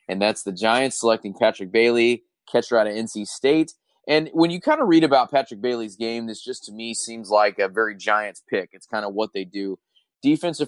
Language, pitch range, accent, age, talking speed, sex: English, 105-125 Hz, American, 20-39, 220 wpm, male